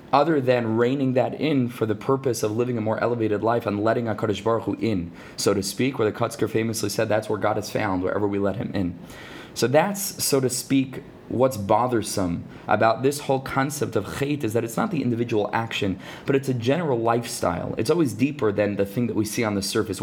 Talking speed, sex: 225 wpm, male